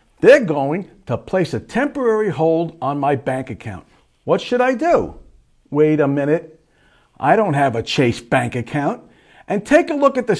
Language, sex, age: English, male, 50-69